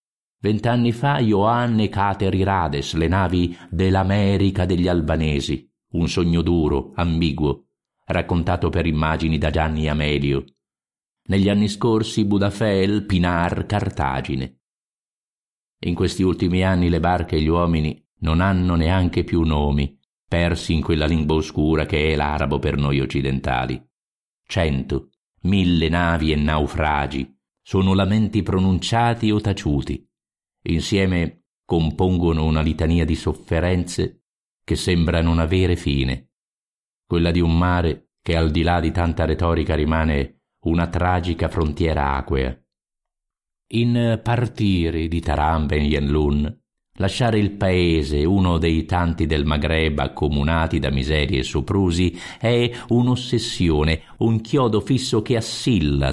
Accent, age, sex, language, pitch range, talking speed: native, 50-69, male, Italian, 75-100 Hz, 125 wpm